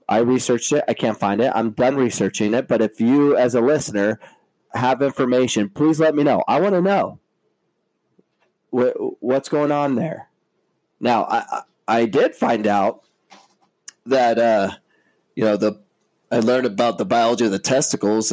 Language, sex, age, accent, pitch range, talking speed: English, male, 30-49, American, 105-145 Hz, 165 wpm